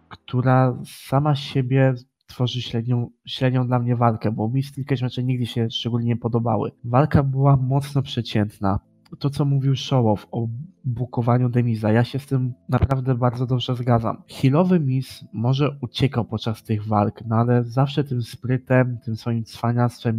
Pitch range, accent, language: 115-135 Hz, native, Polish